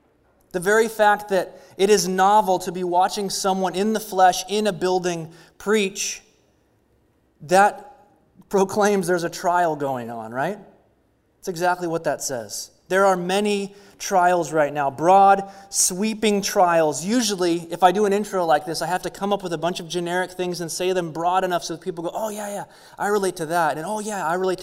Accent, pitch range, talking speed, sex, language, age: American, 165-195 Hz, 195 wpm, male, English, 20-39